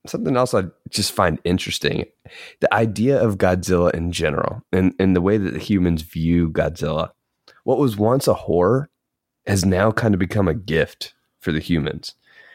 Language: English